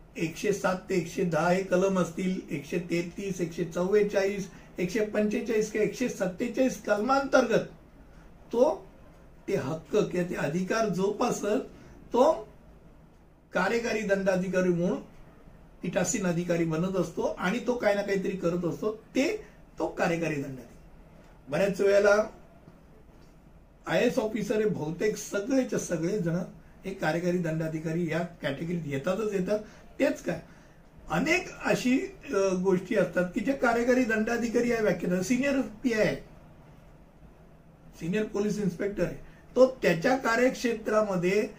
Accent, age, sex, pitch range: native, 60-79, male, 180-230 Hz